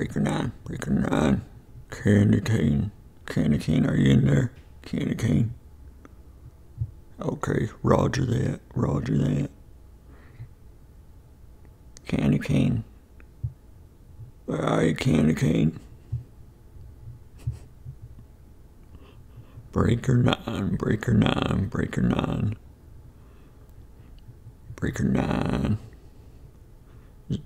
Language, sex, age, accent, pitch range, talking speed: English, male, 50-69, American, 70-115 Hz, 75 wpm